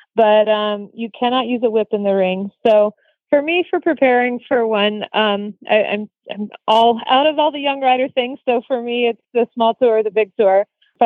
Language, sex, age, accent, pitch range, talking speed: English, female, 30-49, American, 200-245 Hz, 220 wpm